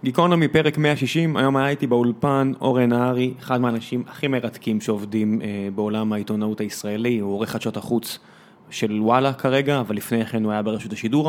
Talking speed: 165 wpm